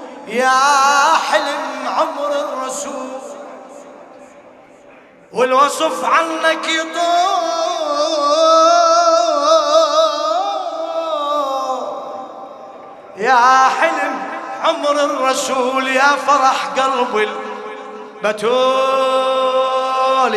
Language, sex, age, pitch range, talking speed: Arabic, male, 20-39, 260-345 Hz, 45 wpm